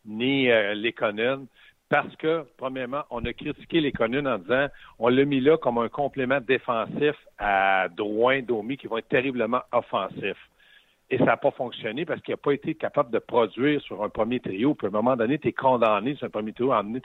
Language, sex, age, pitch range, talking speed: French, male, 60-79, 125-180 Hz, 215 wpm